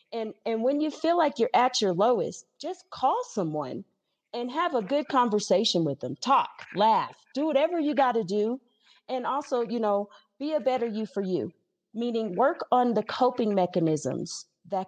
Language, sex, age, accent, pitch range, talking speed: English, female, 30-49, American, 180-250 Hz, 180 wpm